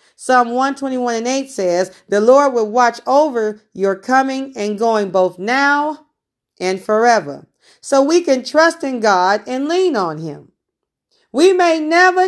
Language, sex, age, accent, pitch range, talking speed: English, female, 40-59, American, 220-300 Hz, 150 wpm